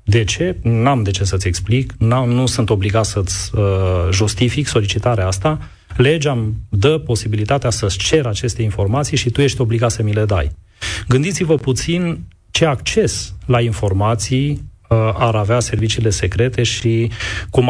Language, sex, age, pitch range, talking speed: Romanian, male, 30-49, 100-130 Hz, 155 wpm